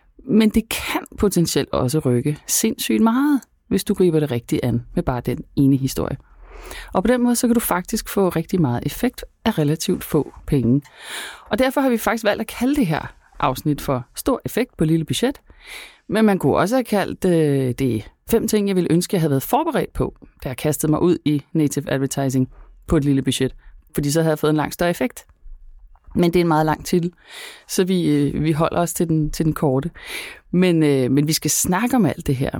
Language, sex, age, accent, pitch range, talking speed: Danish, female, 30-49, native, 140-200 Hz, 215 wpm